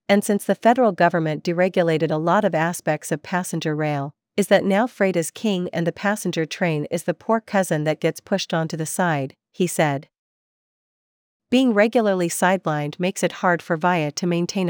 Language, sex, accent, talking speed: English, female, American, 185 wpm